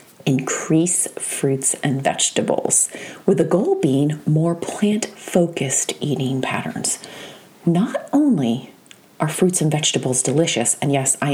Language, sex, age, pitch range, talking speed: English, female, 30-49, 145-210 Hz, 115 wpm